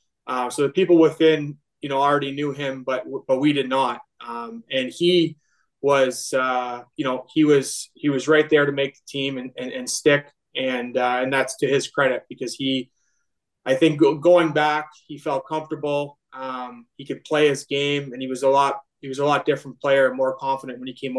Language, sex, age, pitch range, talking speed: English, male, 20-39, 125-145 Hz, 210 wpm